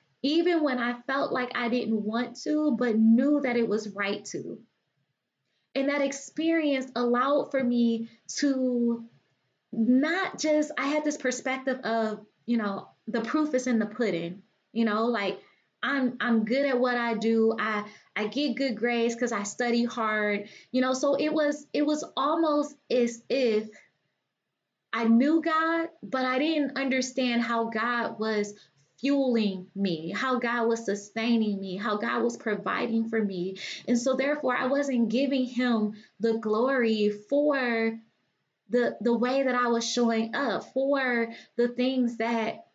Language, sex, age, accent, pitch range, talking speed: English, female, 20-39, American, 225-275 Hz, 155 wpm